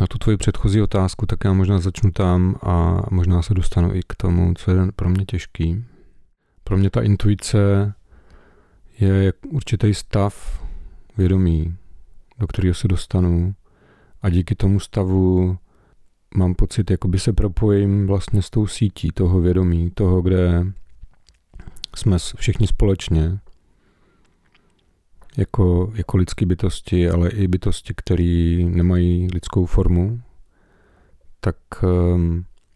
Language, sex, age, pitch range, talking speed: Czech, male, 40-59, 85-100 Hz, 125 wpm